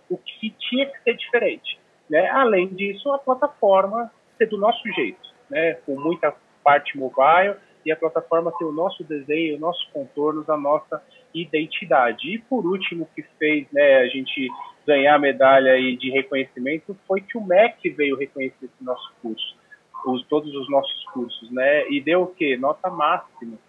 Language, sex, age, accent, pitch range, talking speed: Portuguese, male, 30-49, Brazilian, 140-195 Hz, 175 wpm